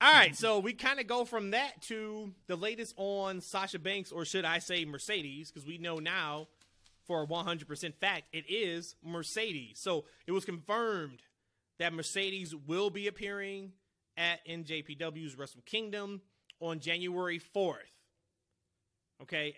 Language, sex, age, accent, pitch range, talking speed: English, male, 30-49, American, 145-190 Hz, 145 wpm